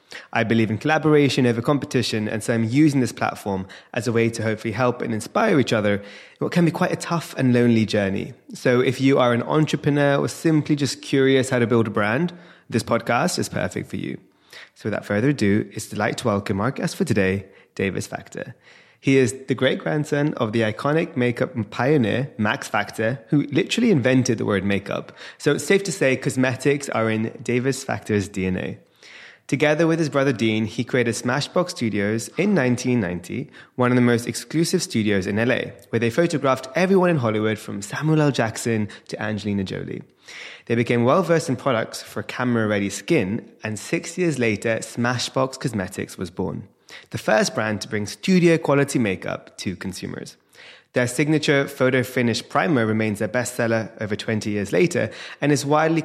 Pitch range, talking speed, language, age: 110-145 Hz, 180 wpm, English, 20-39